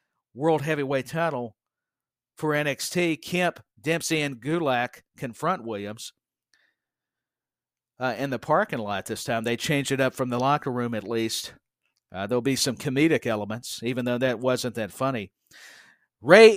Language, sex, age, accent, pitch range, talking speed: English, male, 50-69, American, 130-170 Hz, 150 wpm